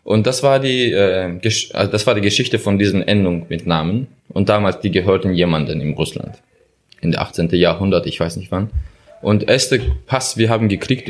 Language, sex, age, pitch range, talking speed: German, male, 20-39, 95-115 Hz, 200 wpm